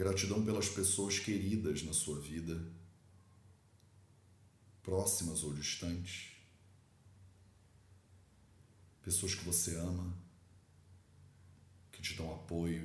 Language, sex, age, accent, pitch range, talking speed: English, male, 40-59, Brazilian, 90-100 Hz, 85 wpm